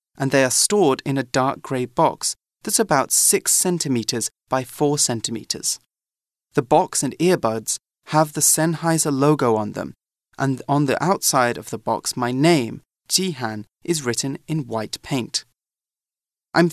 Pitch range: 120-165 Hz